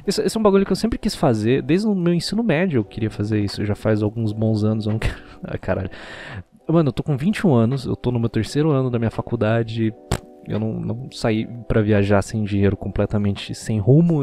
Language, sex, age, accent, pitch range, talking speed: Portuguese, male, 20-39, Brazilian, 110-150 Hz, 230 wpm